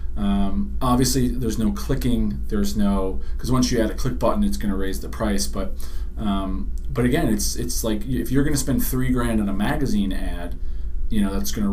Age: 40-59